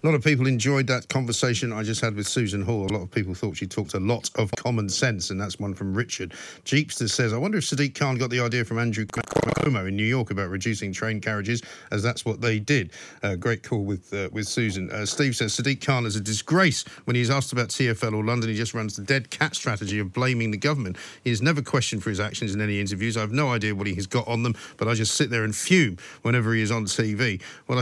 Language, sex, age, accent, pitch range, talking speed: English, male, 50-69, British, 110-140 Hz, 260 wpm